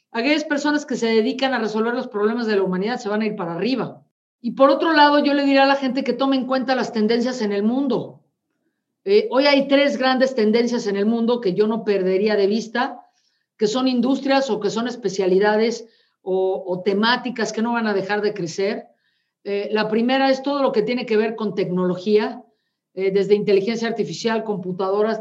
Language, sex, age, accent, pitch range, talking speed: Spanish, female, 40-59, Mexican, 205-250 Hz, 205 wpm